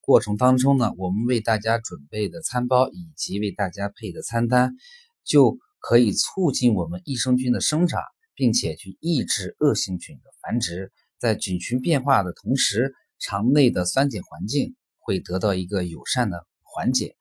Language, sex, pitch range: Chinese, male, 95-145 Hz